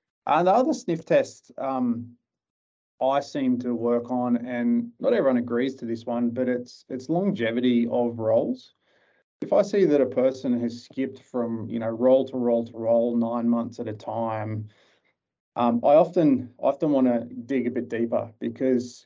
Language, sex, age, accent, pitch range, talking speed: English, male, 20-39, Australian, 115-130 Hz, 175 wpm